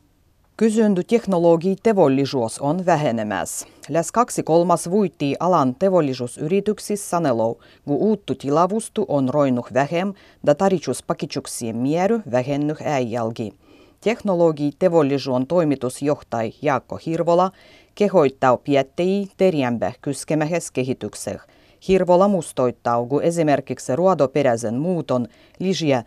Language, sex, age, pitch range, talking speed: Finnish, female, 30-49, 125-185 Hz, 85 wpm